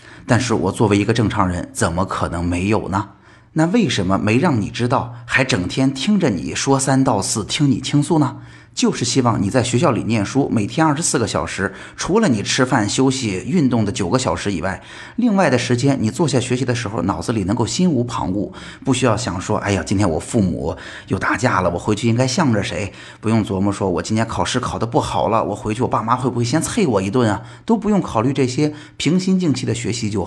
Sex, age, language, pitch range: male, 30-49, Chinese, 95-130 Hz